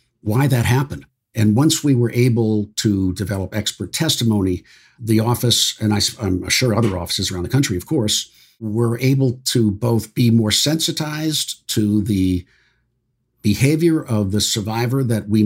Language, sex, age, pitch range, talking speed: English, male, 50-69, 95-120 Hz, 150 wpm